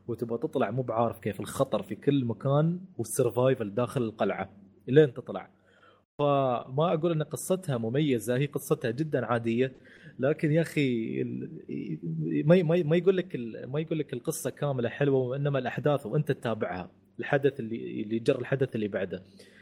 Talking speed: 140 wpm